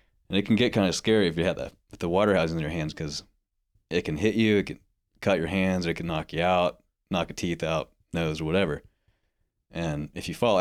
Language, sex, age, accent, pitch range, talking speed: English, male, 30-49, American, 80-95 Hz, 250 wpm